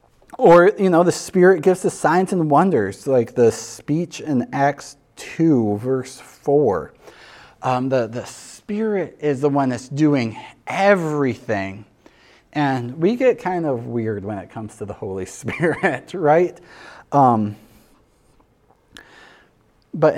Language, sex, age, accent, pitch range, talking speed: English, male, 30-49, American, 110-165 Hz, 130 wpm